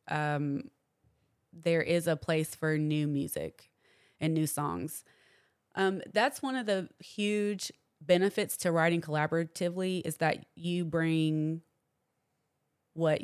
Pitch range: 145-165 Hz